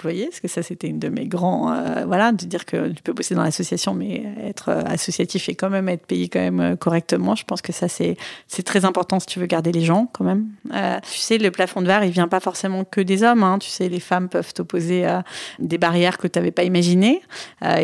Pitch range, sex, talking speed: 175-205 Hz, female, 255 wpm